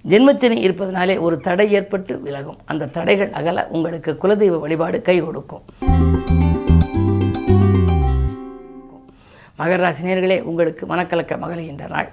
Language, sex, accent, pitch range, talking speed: Tamil, female, native, 160-195 Hz, 100 wpm